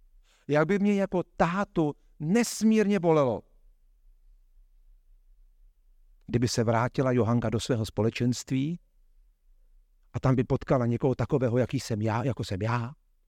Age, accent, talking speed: 50-69, native, 115 wpm